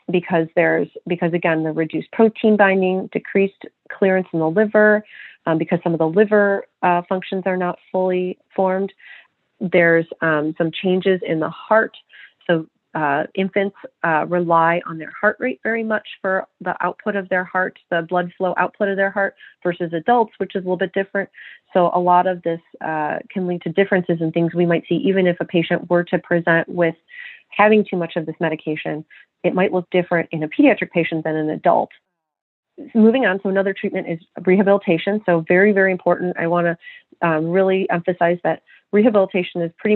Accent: American